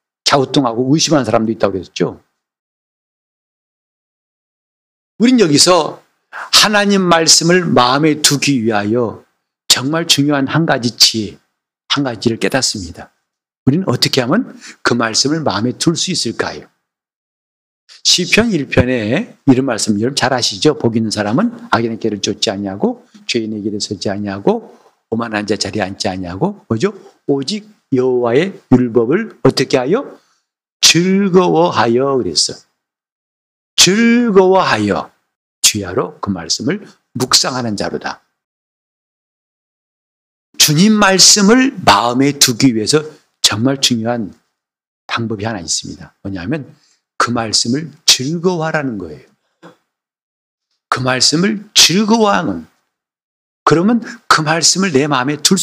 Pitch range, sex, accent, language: 115-180 Hz, male, native, Korean